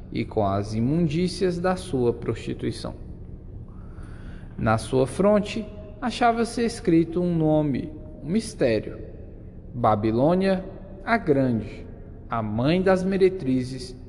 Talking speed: 100 wpm